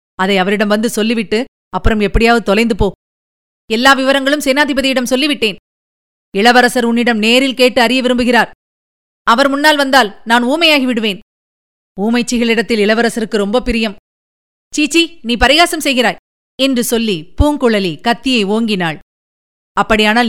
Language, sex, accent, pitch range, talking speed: Tamil, female, native, 200-280 Hz, 110 wpm